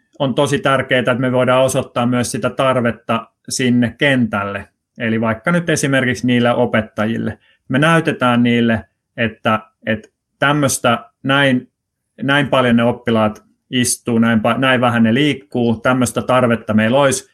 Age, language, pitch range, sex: 30-49, Finnish, 115-135 Hz, male